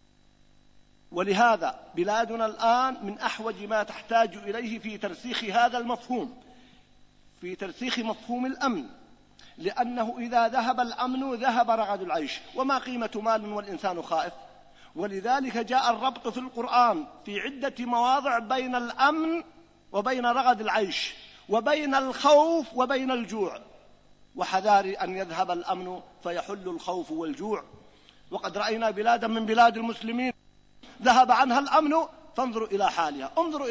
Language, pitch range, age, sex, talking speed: Arabic, 220-285 Hz, 50-69, male, 115 wpm